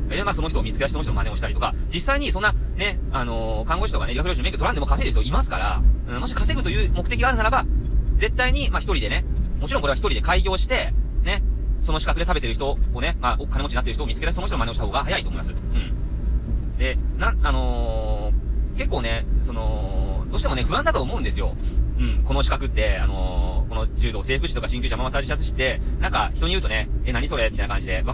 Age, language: 30-49, Japanese